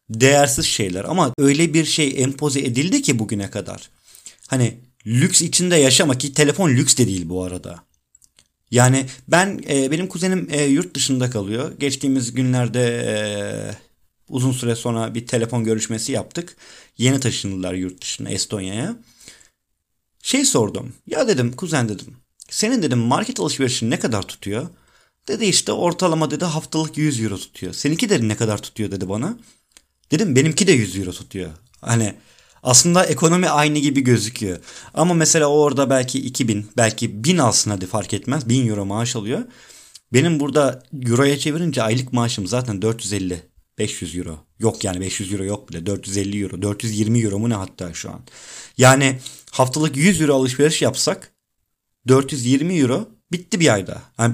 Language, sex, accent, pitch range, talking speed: Turkish, male, native, 110-145 Hz, 150 wpm